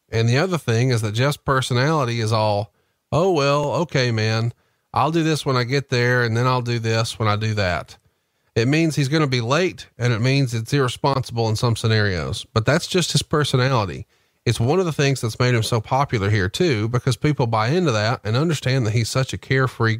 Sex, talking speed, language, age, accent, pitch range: male, 220 wpm, English, 30-49, American, 110-140 Hz